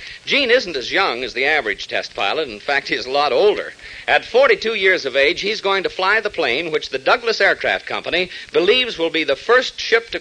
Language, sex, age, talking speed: English, male, 60-79, 225 wpm